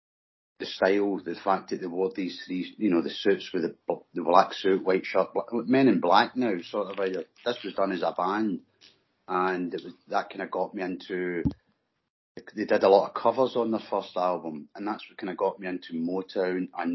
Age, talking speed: 30-49, 220 wpm